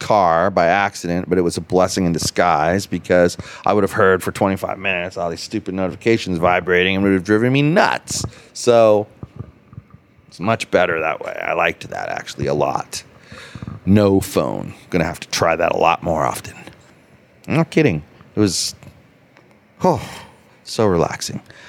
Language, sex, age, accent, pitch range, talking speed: English, male, 30-49, American, 95-125 Hz, 170 wpm